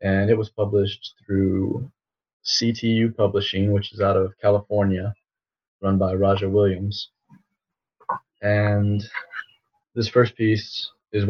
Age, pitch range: 30-49, 95-110 Hz